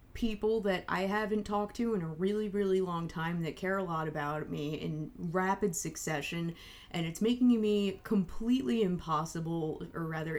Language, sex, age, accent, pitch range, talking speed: English, female, 20-39, American, 165-205 Hz, 170 wpm